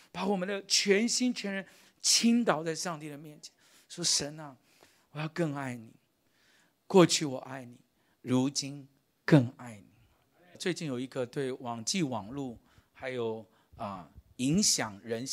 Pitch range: 120-160 Hz